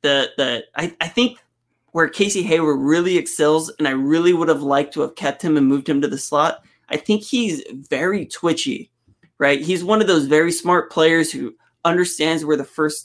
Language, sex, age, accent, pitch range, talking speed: English, male, 20-39, American, 140-160 Hz, 200 wpm